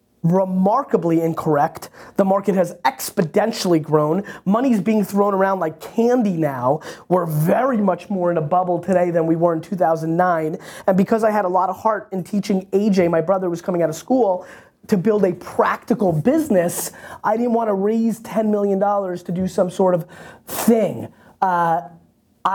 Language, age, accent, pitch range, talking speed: English, 20-39, American, 170-215 Hz, 175 wpm